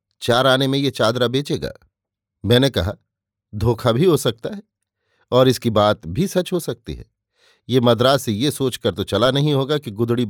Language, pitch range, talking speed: Hindi, 105-135 Hz, 185 wpm